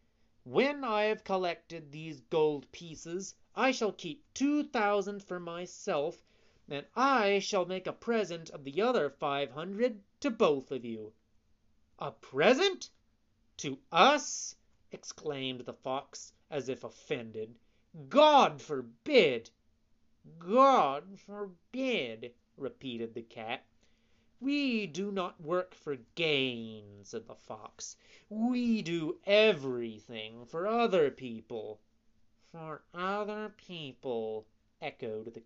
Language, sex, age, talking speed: English, male, 30-49, 110 wpm